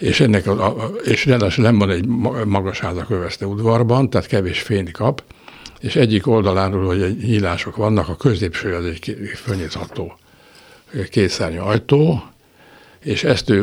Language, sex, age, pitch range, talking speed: Hungarian, male, 60-79, 95-115 Hz, 120 wpm